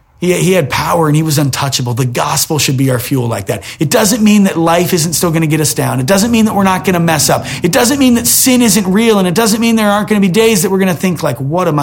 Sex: male